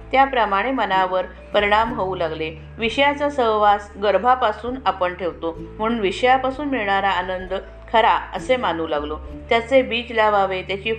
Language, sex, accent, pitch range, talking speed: Marathi, female, native, 185-235 Hz, 120 wpm